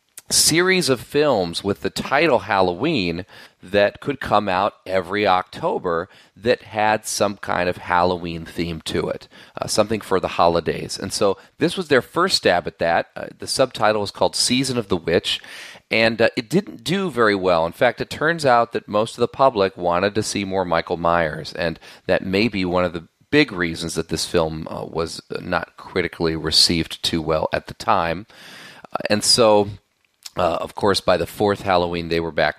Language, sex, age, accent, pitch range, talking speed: English, male, 40-59, American, 85-125 Hz, 190 wpm